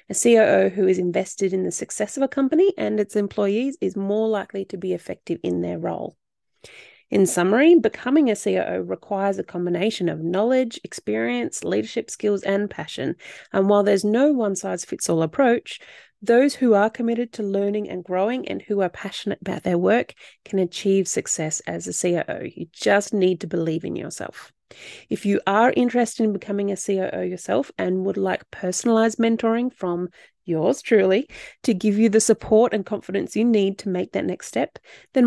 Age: 30-49